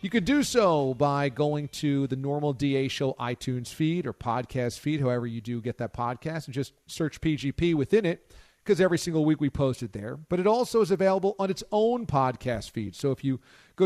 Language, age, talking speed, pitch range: English, 40-59, 215 wpm, 135-195 Hz